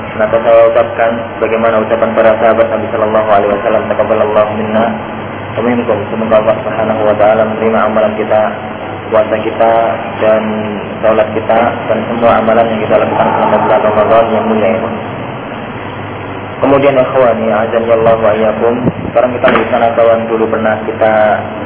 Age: 20-39